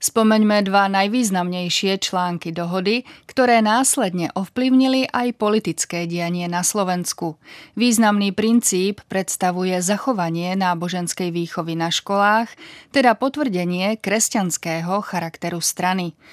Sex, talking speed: female, 95 wpm